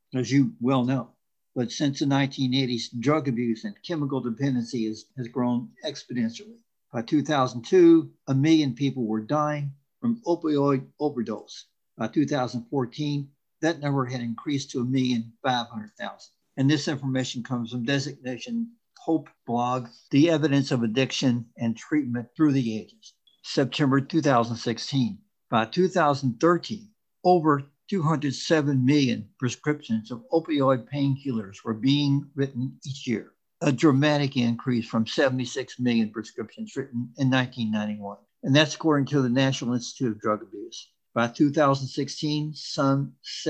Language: English